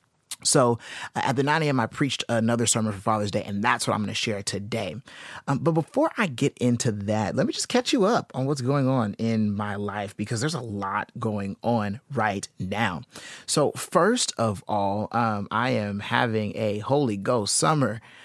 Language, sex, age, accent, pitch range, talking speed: English, male, 30-49, American, 105-130 Hz, 195 wpm